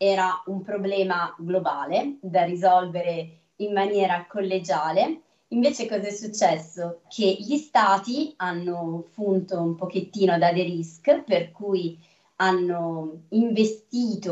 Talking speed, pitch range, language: 115 wpm, 170-210 Hz, Italian